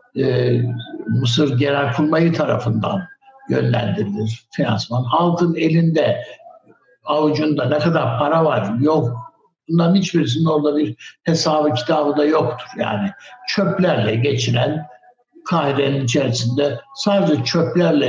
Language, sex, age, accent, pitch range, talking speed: Turkish, male, 60-79, native, 125-165 Hz, 100 wpm